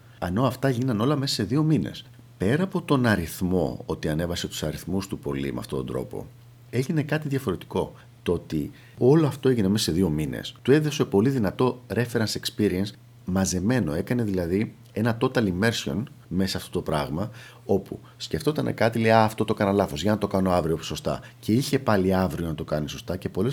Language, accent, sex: Greek, native, male